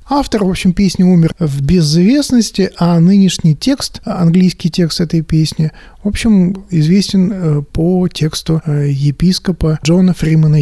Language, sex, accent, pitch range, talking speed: Russian, male, native, 150-180 Hz, 125 wpm